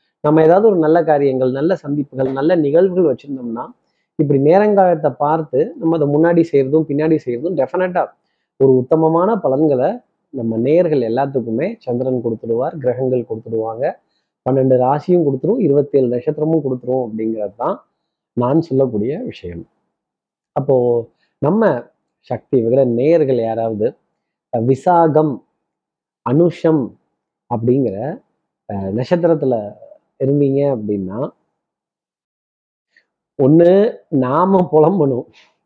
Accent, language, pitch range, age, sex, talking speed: native, Tamil, 125-165 Hz, 30-49, male, 95 wpm